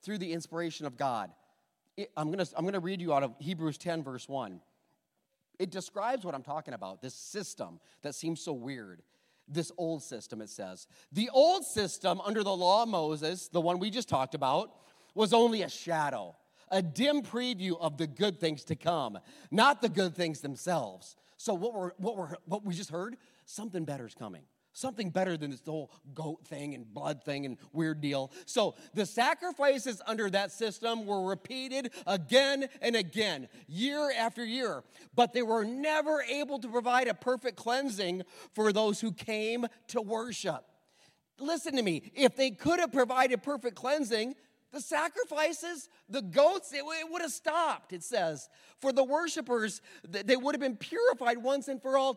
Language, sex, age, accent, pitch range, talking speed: English, male, 40-59, American, 170-260 Hz, 175 wpm